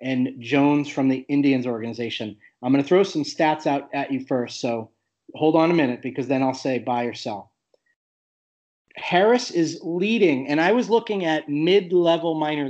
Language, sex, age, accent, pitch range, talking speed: English, male, 30-49, American, 135-165 Hz, 180 wpm